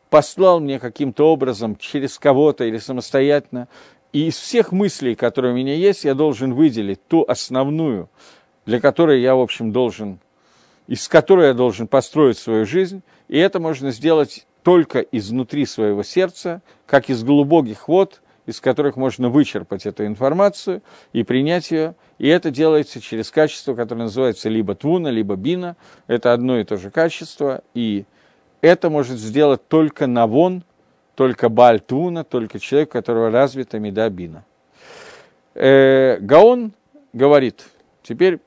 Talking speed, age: 140 wpm, 50-69